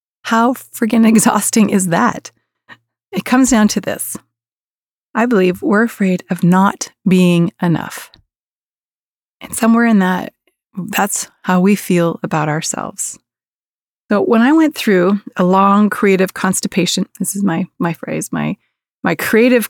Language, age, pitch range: English, 30-49, 180-225 Hz